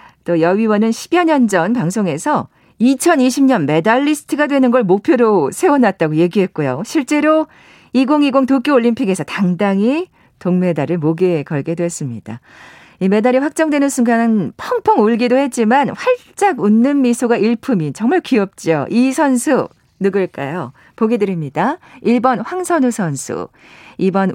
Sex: female